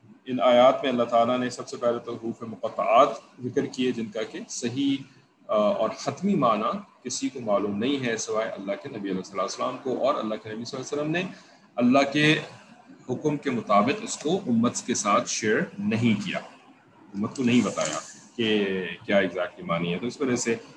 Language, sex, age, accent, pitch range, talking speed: English, male, 30-49, Indian, 120-150 Hz, 110 wpm